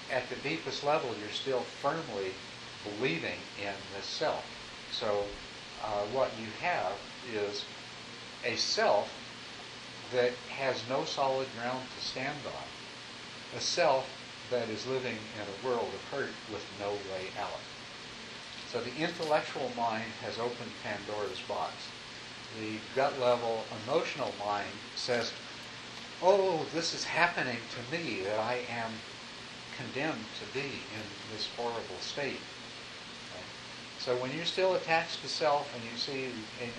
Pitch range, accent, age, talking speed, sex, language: 110-125 Hz, American, 60-79, 135 wpm, male, English